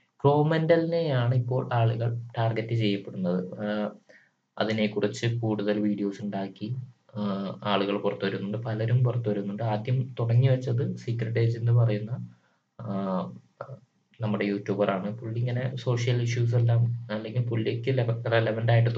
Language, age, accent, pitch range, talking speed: Malayalam, 20-39, native, 105-125 Hz, 95 wpm